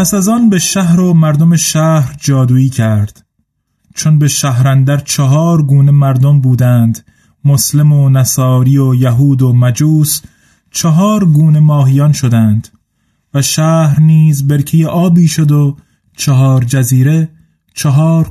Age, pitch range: 30-49, 130-155 Hz